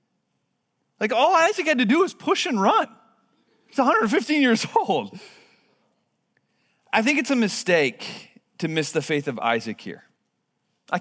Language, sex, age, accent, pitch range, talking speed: English, male, 30-49, American, 140-205 Hz, 145 wpm